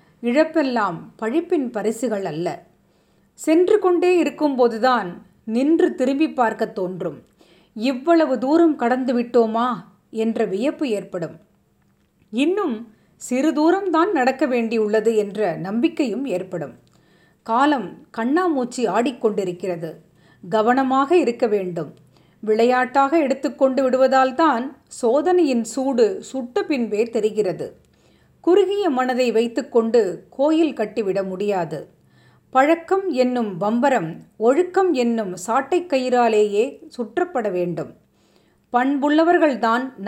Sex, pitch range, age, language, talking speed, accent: female, 210-295 Hz, 30-49, Tamil, 85 wpm, native